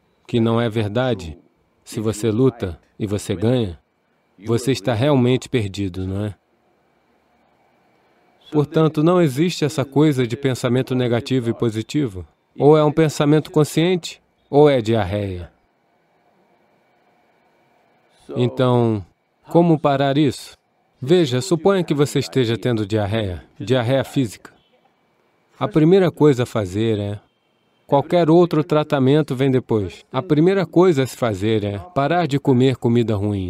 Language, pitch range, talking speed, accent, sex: English, 110-145 Hz, 125 wpm, Brazilian, male